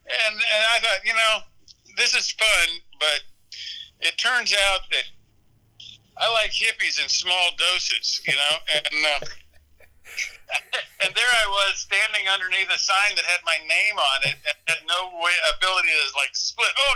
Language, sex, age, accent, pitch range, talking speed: English, male, 50-69, American, 155-205 Hz, 165 wpm